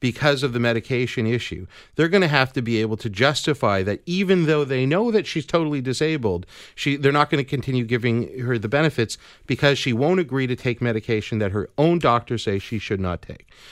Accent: American